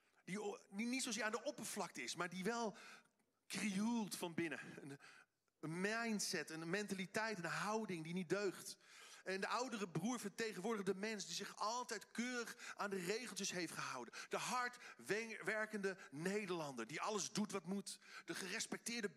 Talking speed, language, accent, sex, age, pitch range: 155 wpm, Dutch, Dutch, male, 50-69, 170-220 Hz